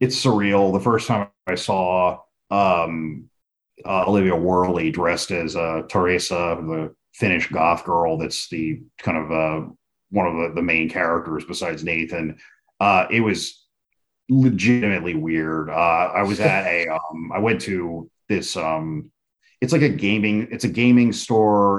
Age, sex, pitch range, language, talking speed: 30-49, male, 80-100 Hz, English, 155 wpm